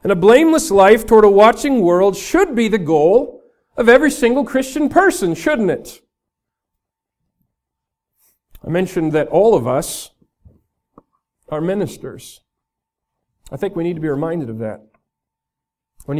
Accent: American